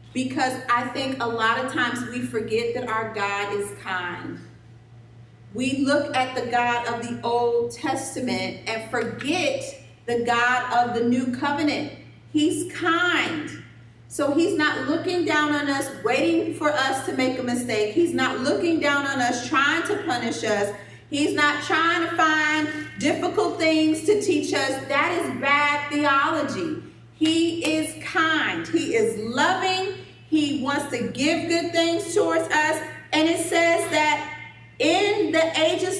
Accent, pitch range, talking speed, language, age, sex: American, 255-370 Hz, 155 wpm, English, 40-59, female